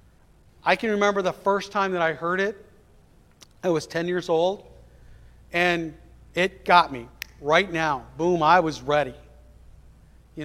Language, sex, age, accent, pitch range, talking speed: English, male, 50-69, American, 150-180 Hz, 150 wpm